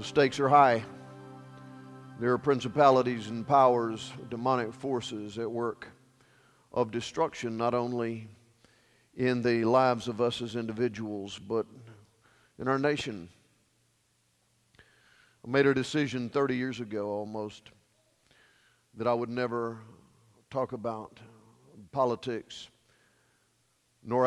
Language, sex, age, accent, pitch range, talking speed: English, male, 50-69, American, 115-130 Hz, 110 wpm